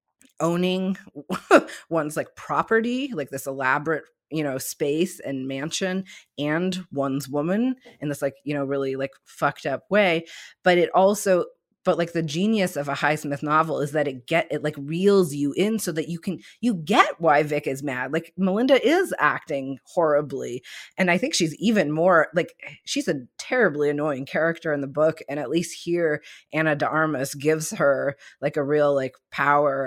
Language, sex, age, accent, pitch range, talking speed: English, female, 30-49, American, 145-190 Hz, 175 wpm